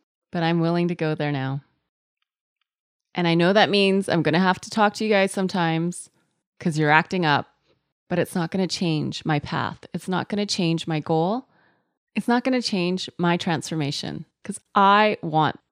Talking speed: 195 wpm